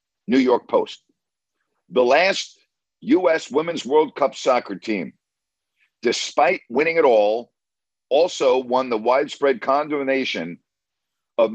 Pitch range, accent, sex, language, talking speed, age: 125-185 Hz, American, male, English, 110 wpm, 50-69